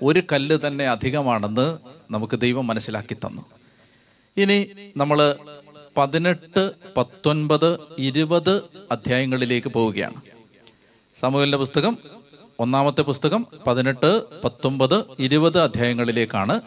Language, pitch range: Malayalam, 125-165 Hz